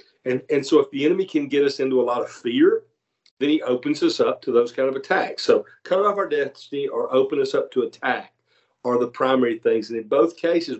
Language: English